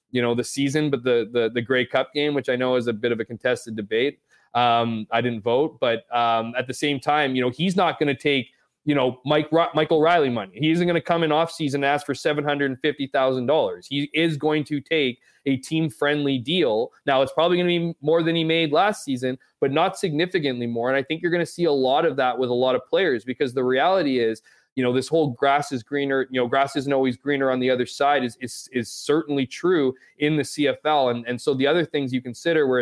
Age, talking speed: 20-39, 250 wpm